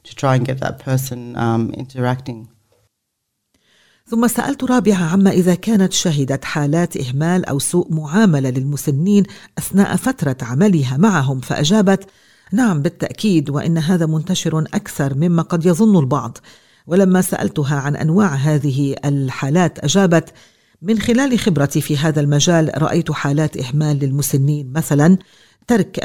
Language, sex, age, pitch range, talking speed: English, female, 50-69, 145-185 Hz, 110 wpm